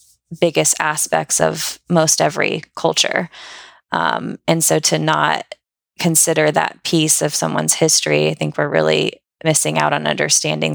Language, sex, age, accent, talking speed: English, female, 20-39, American, 140 wpm